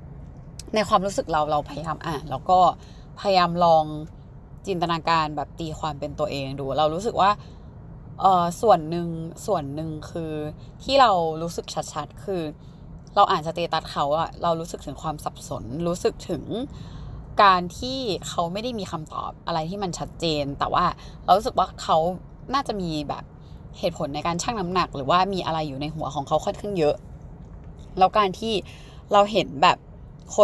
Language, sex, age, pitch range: Thai, female, 20-39, 150-195 Hz